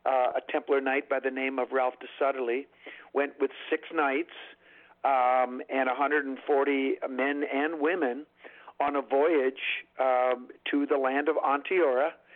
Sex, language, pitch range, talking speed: male, English, 125-145 Hz, 145 wpm